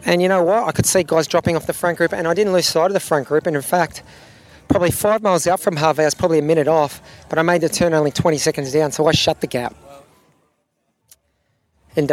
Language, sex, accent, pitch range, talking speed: English, male, Australian, 145-180 Hz, 250 wpm